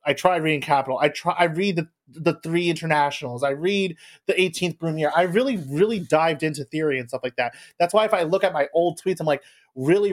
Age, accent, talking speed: 30-49, American, 230 wpm